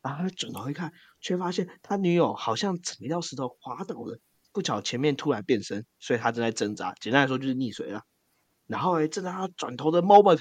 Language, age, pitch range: Chinese, 20-39, 120-170 Hz